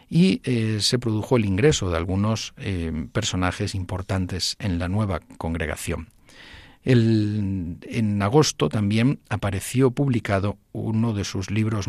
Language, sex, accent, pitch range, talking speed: Spanish, male, Spanish, 95-115 Hz, 125 wpm